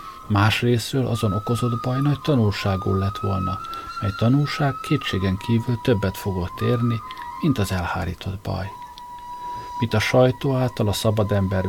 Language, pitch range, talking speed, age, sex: Hungarian, 100-140 Hz, 135 wpm, 50-69, male